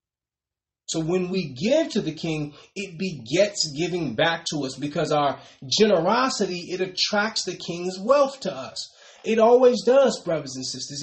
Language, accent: English, American